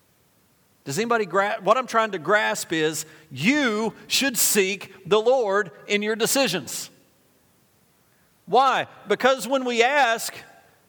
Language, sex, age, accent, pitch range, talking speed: English, male, 40-59, American, 175-240 Hz, 120 wpm